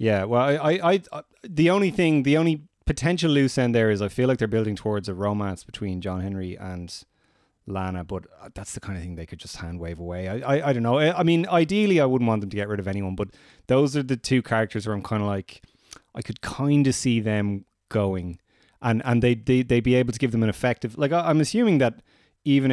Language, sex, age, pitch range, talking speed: English, male, 30-49, 95-125 Hz, 250 wpm